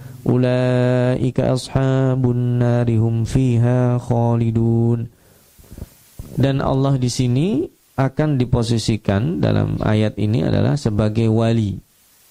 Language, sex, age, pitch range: Indonesian, male, 20-39, 110-130 Hz